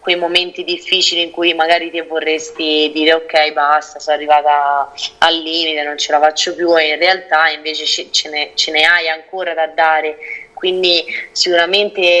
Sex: female